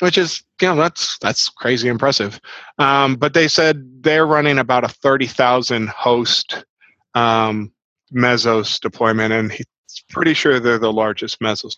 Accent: American